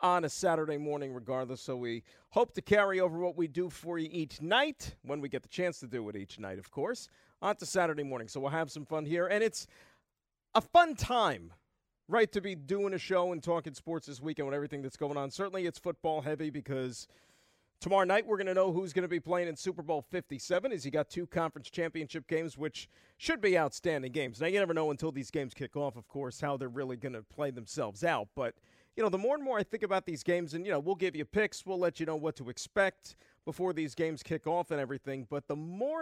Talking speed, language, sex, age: 245 wpm, English, male, 50-69